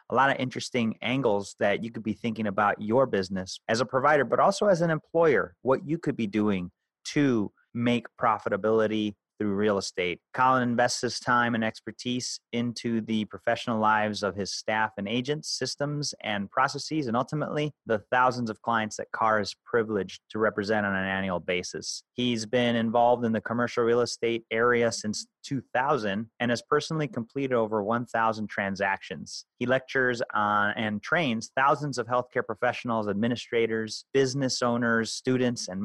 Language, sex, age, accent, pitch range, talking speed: English, male, 30-49, American, 110-130 Hz, 165 wpm